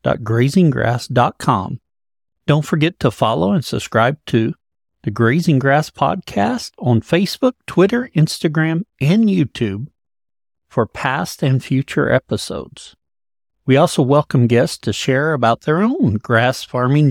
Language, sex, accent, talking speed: English, male, American, 120 wpm